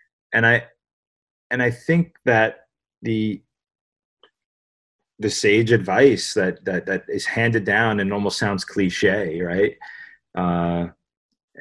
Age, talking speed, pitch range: 30-49, 115 wpm, 90-120 Hz